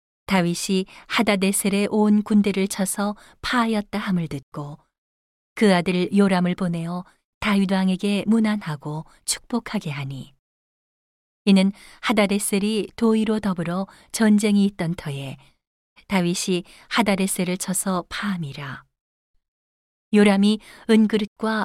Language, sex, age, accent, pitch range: Korean, female, 40-59, native, 165-210 Hz